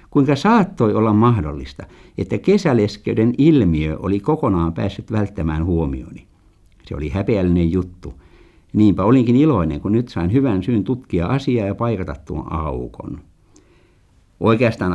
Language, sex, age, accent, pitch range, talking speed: Finnish, male, 60-79, native, 85-125 Hz, 125 wpm